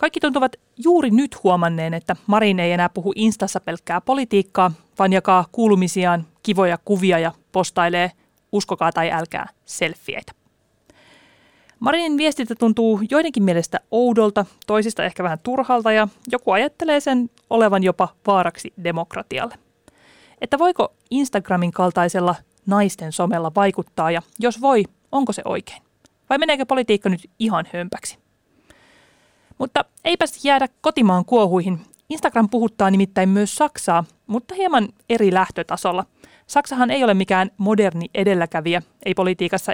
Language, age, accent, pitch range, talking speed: Finnish, 30-49, native, 180-240 Hz, 125 wpm